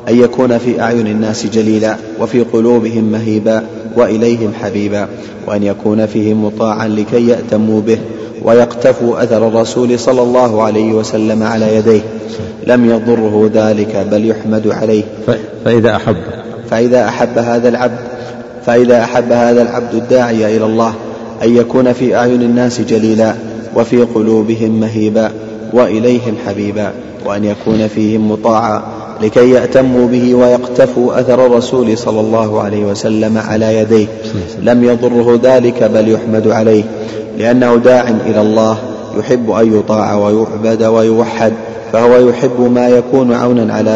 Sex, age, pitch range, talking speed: male, 30-49, 110-120 Hz, 130 wpm